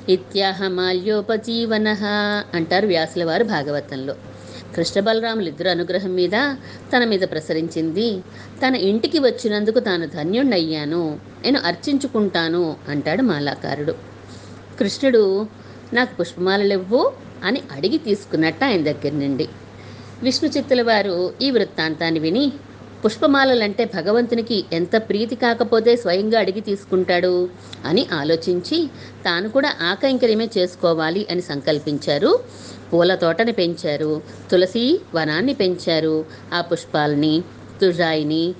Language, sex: Telugu, female